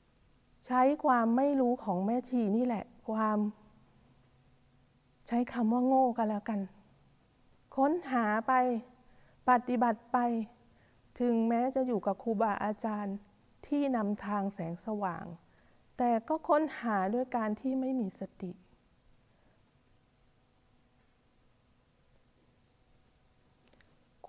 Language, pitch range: Thai, 175-245 Hz